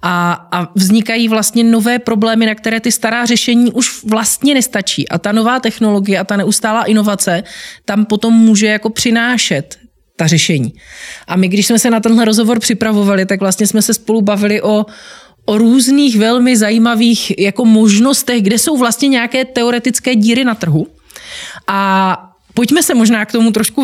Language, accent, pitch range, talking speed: Czech, native, 185-230 Hz, 165 wpm